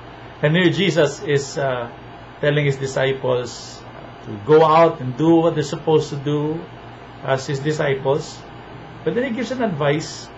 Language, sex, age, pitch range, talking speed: English, male, 50-69, 125-160 Hz, 155 wpm